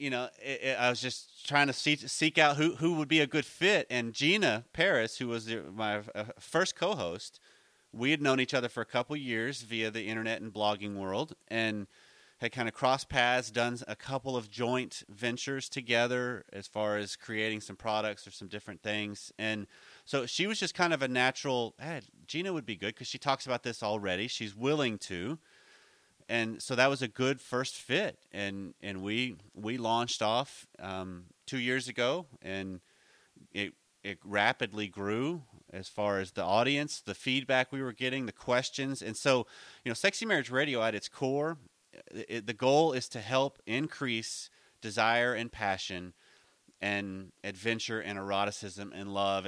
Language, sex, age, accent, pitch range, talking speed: English, male, 30-49, American, 105-130 Hz, 185 wpm